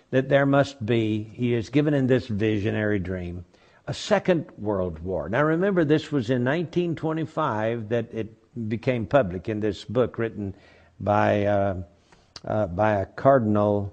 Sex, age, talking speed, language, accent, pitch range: male, 60-79, 150 wpm, English, American, 110-140 Hz